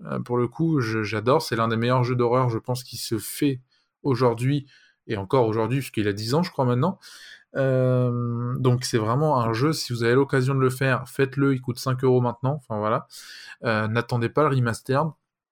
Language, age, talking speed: French, 20-39, 200 wpm